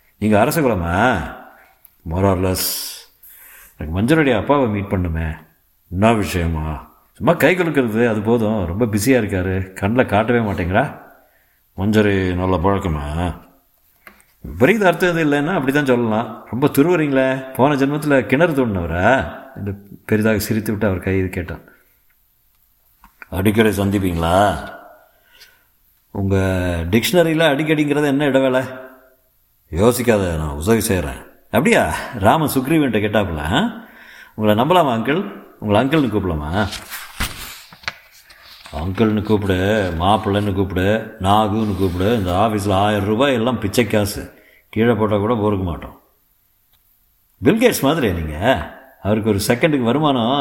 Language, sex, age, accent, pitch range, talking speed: Tamil, male, 50-69, native, 95-120 Hz, 110 wpm